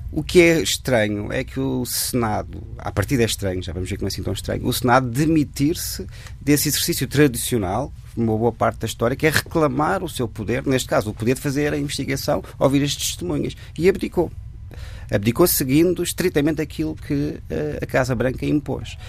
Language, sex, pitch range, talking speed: Portuguese, male, 105-140 Hz, 190 wpm